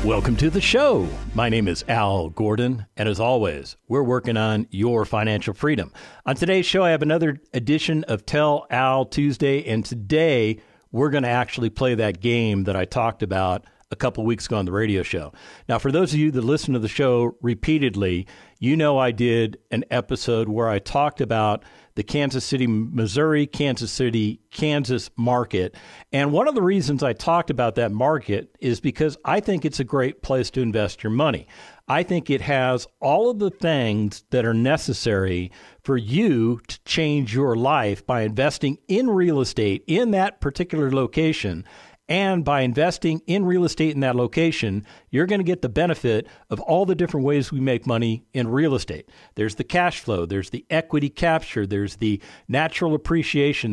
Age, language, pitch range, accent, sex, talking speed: 50-69, English, 110-155 Hz, American, male, 185 wpm